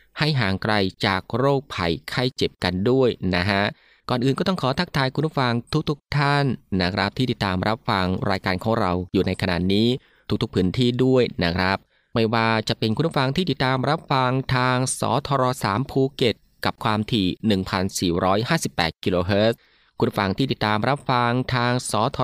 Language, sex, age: Thai, male, 20-39